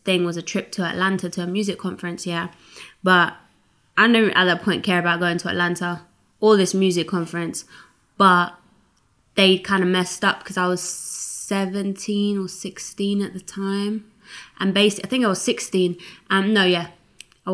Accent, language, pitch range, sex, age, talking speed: British, English, 180-200 Hz, female, 20-39, 180 wpm